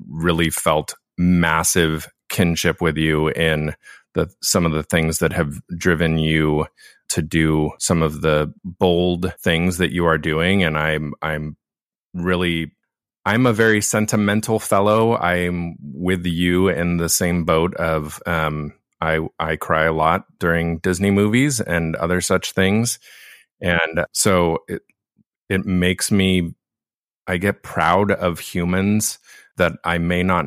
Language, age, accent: English, 30-49, American